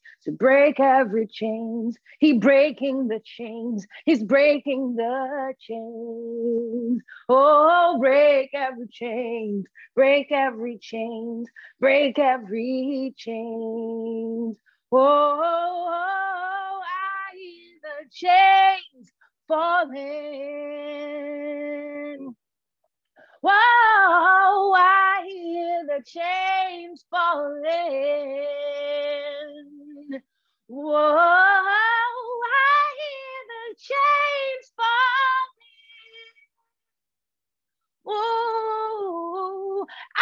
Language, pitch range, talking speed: French, 270-405 Hz, 60 wpm